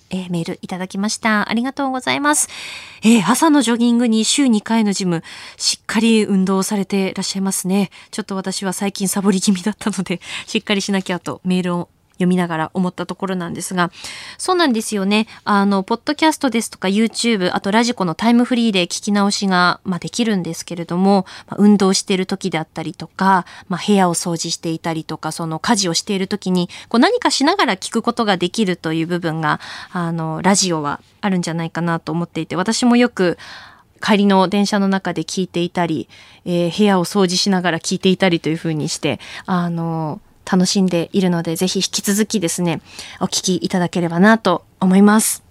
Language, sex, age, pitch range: Japanese, female, 20-39, 175-230 Hz